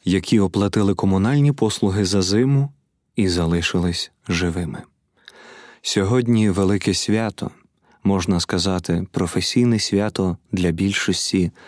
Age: 30-49